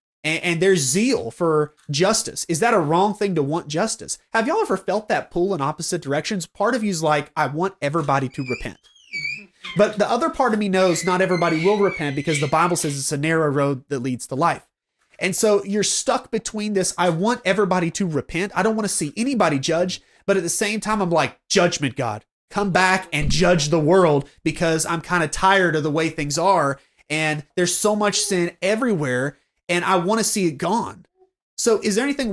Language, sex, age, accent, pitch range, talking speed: English, male, 30-49, American, 150-205 Hz, 215 wpm